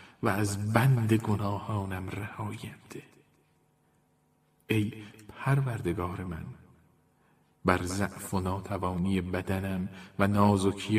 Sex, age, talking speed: male, 40-59, 80 wpm